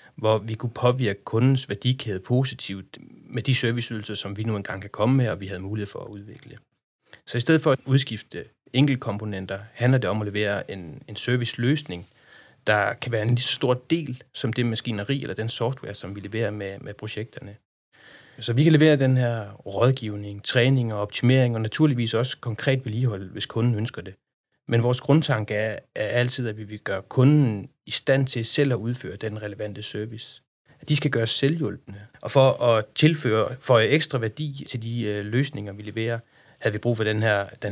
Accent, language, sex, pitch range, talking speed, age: native, Danish, male, 105-130 Hz, 190 wpm, 30-49